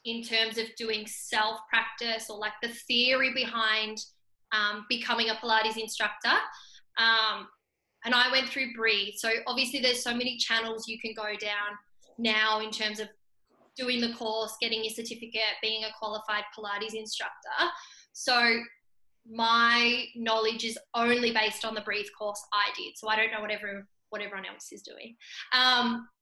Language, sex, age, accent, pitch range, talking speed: English, female, 10-29, Australian, 220-245 Hz, 160 wpm